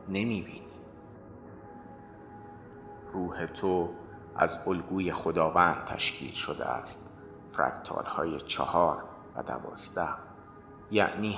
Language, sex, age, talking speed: Persian, male, 30-49, 85 wpm